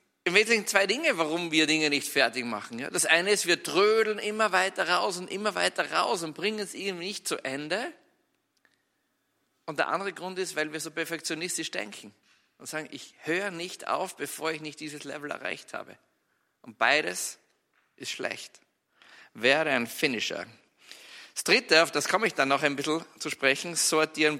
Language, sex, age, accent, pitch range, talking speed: German, male, 50-69, German, 145-215 Hz, 175 wpm